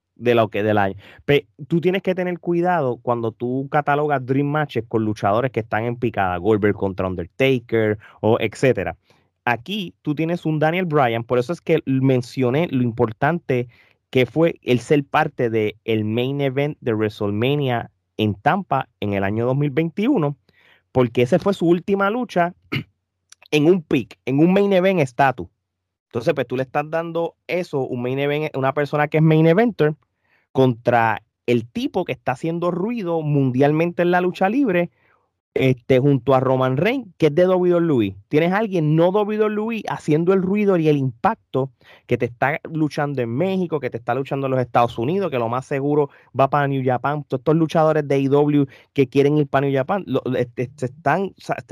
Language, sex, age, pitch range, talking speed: Spanish, male, 30-49, 120-165 Hz, 185 wpm